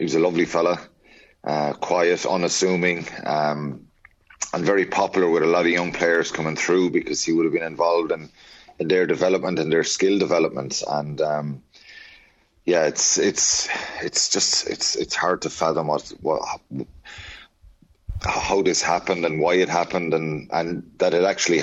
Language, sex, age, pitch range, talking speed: English, male, 30-49, 80-90 Hz, 165 wpm